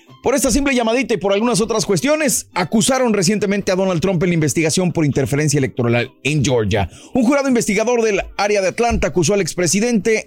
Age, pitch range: 30-49, 145-200 Hz